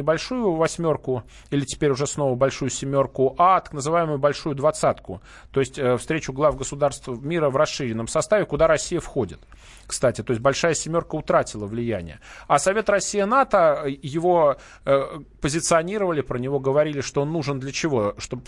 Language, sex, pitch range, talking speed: Russian, male, 135-170 Hz, 150 wpm